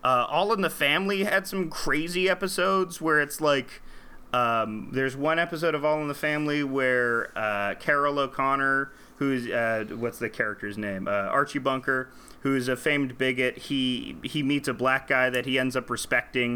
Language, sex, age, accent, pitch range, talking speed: English, male, 30-49, American, 120-150 Hz, 180 wpm